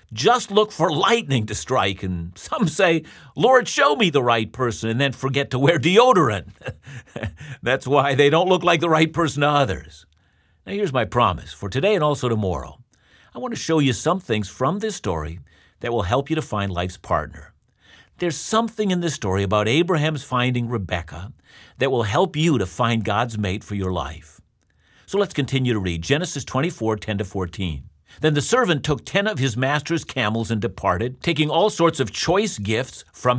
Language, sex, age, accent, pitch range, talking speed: English, male, 50-69, American, 105-160 Hz, 190 wpm